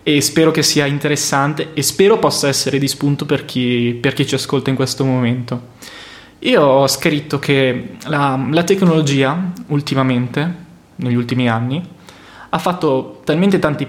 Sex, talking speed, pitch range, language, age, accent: male, 145 wpm, 130-160 Hz, Italian, 20-39, native